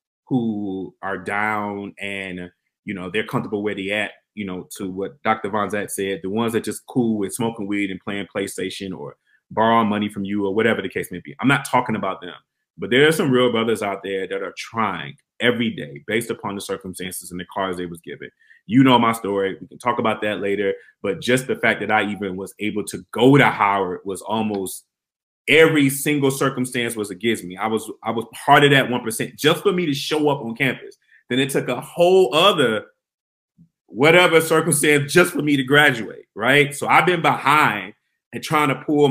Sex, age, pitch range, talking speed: male, 30-49, 100-135 Hz, 210 wpm